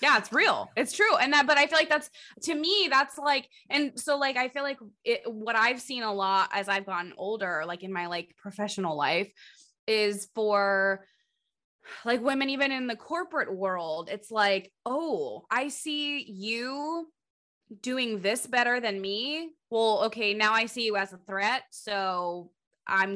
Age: 20-39